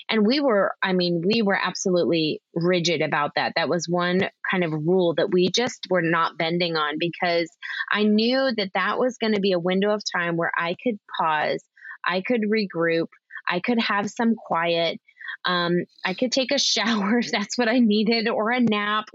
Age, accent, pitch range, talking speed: 20-39, American, 180-235 Hz, 195 wpm